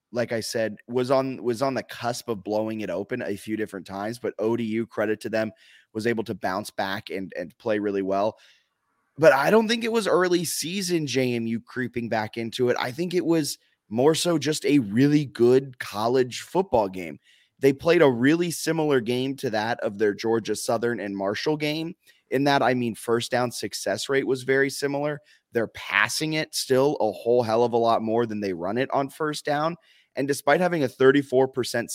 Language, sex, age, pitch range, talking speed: English, male, 20-39, 110-145 Hz, 200 wpm